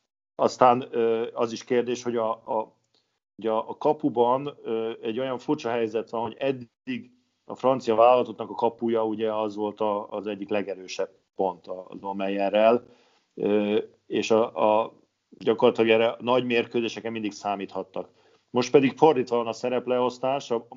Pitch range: 105-120 Hz